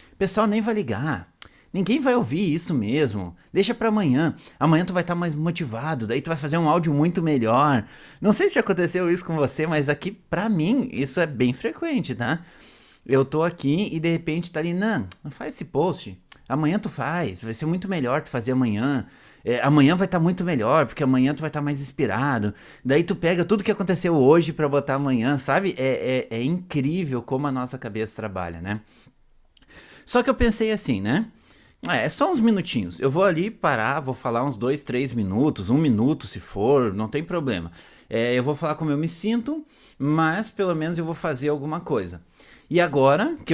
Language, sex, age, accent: Portuguese, male, 30-49, Brazilian